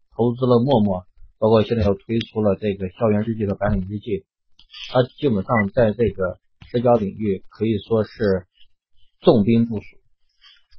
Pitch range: 95-115 Hz